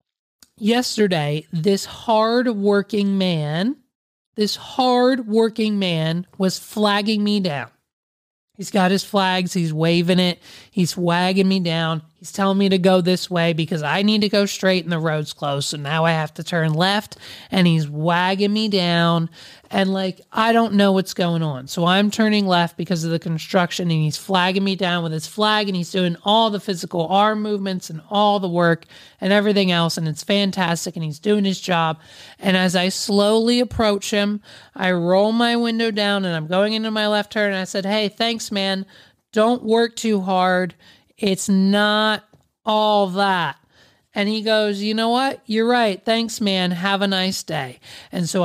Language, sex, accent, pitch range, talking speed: English, male, American, 170-210 Hz, 180 wpm